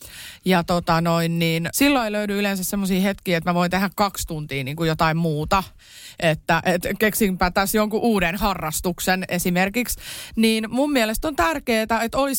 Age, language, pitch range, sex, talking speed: 30-49, Finnish, 185-245 Hz, female, 170 wpm